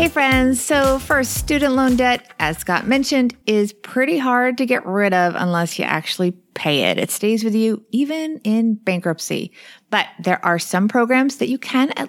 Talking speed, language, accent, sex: 190 wpm, English, American, female